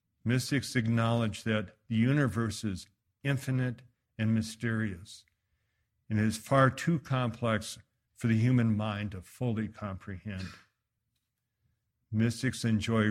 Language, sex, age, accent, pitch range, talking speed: English, male, 60-79, American, 105-120 Hz, 105 wpm